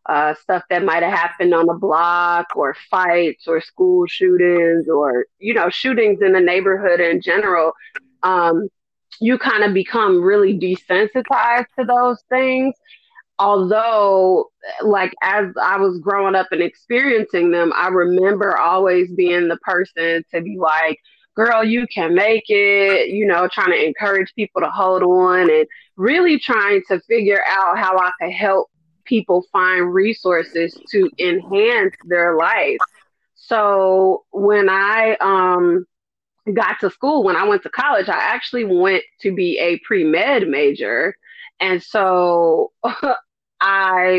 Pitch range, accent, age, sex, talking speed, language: 180-240 Hz, American, 20-39, female, 145 wpm, English